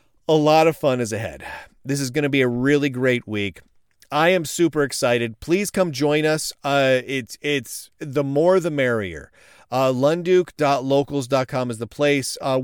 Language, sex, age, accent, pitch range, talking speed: English, male, 40-59, American, 120-155 Hz, 170 wpm